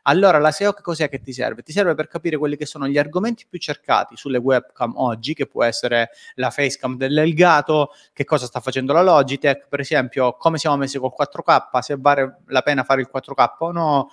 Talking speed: 210 wpm